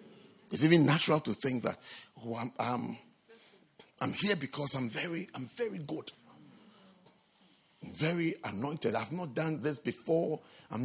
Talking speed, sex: 135 wpm, male